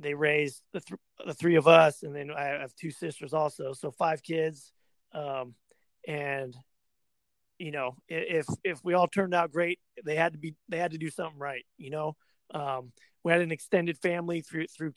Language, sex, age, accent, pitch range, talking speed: English, male, 30-49, American, 145-170 Hz, 195 wpm